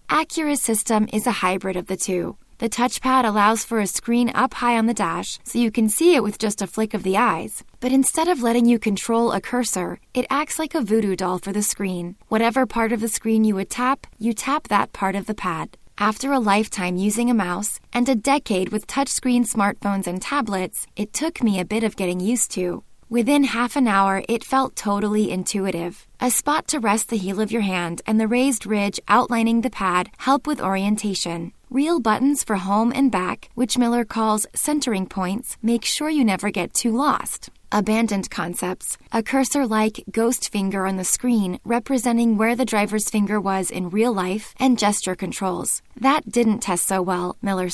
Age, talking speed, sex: 20-39, 200 wpm, female